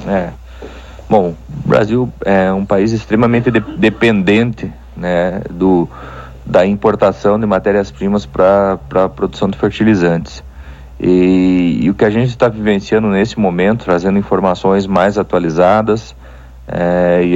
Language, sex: Portuguese, male